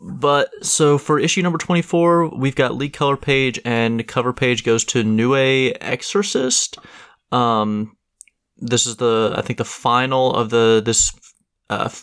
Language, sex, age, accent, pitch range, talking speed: English, male, 20-39, American, 110-130 Hz, 150 wpm